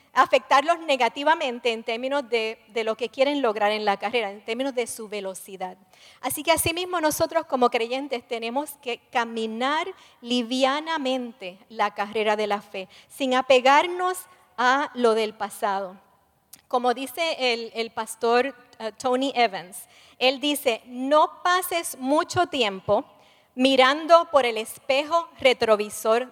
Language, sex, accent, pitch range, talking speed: English, female, American, 225-285 Hz, 130 wpm